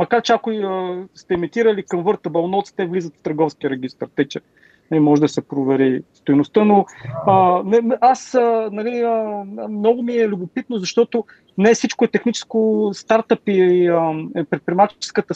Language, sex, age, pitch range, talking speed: Bulgarian, male, 40-59, 170-220 Hz, 160 wpm